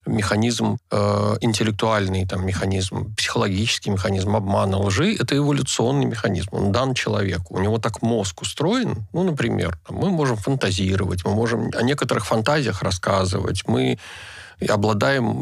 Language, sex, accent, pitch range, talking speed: Russian, male, native, 100-125 Hz, 120 wpm